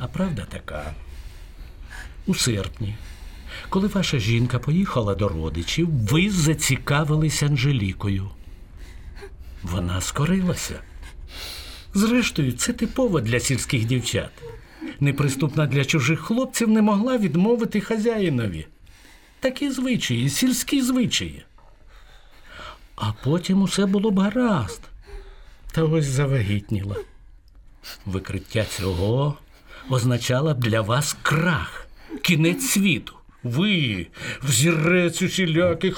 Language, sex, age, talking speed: Ukrainian, male, 60-79, 95 wpm